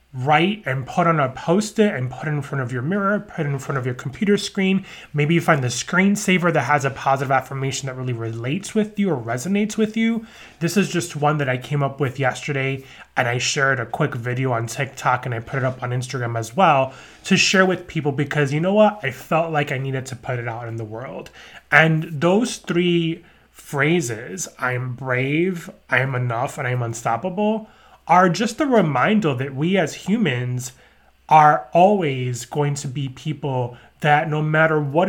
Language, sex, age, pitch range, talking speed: English, male, 20-39, 130-175 Hz, 200 wpm